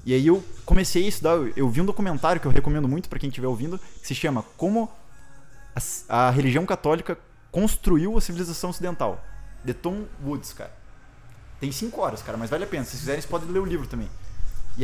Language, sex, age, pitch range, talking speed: Portuguese, male, 20-39, 115-170 Hz, 210 wpm